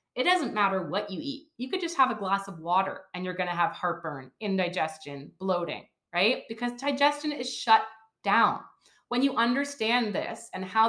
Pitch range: 190-245 Hz